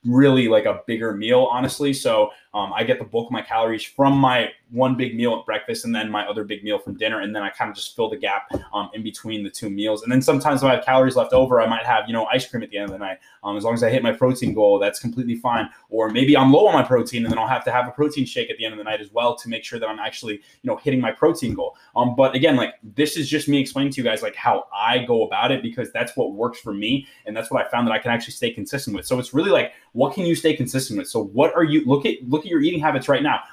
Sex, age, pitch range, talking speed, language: male, 20-39, 115-150 Hz, 310 wpm, English